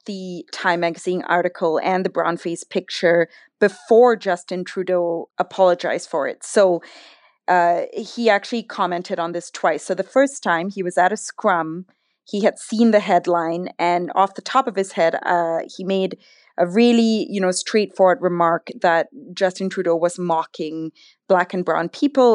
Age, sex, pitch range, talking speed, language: 20-39, female, 170-210 Hz, 165 wpm, English